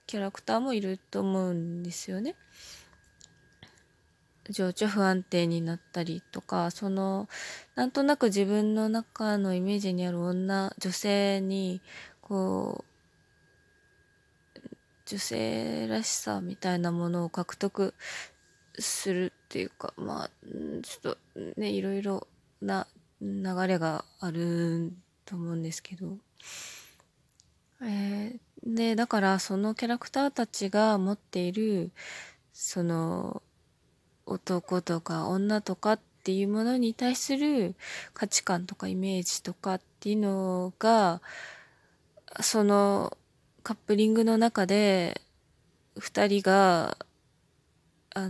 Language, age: Japanese, 20-39